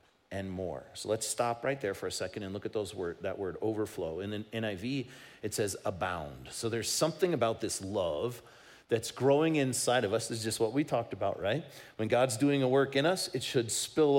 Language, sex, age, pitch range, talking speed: English, male, 40-59, 130-175 Hz, 225 wpm